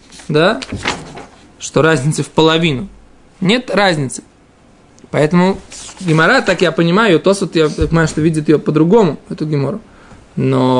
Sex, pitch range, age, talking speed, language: male, 155-200 Hz, 20-39, 120 wpm, Russian